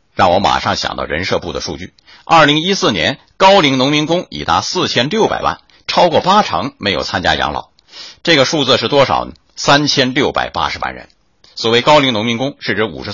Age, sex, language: 50-69, male, Chinese